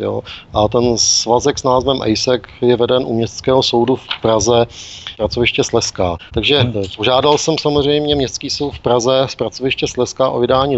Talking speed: 165 wpm